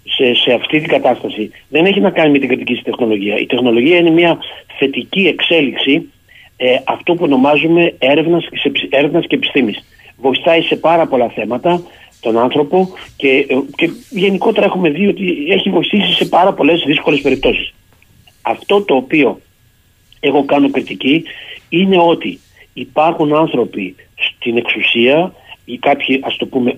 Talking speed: 150 wpm